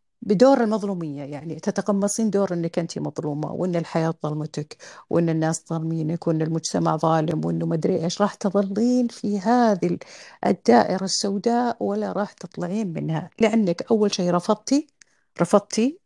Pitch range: 175-230 Hz